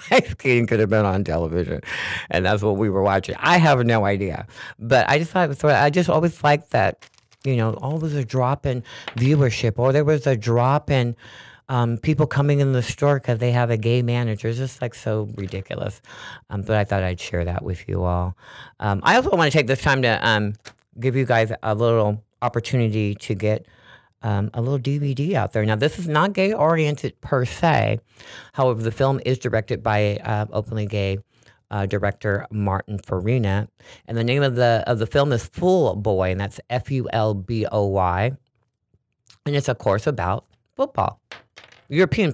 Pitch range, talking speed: 105-135 Hz, 190 wpm